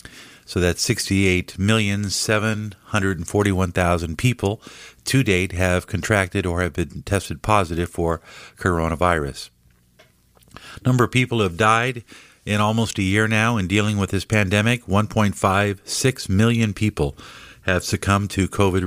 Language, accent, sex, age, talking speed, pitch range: English, American, male, 50-69, 120 wpm, 90-110 Hz